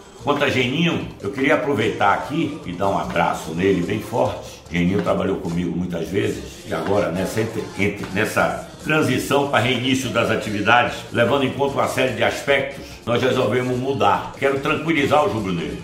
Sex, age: male, 60-79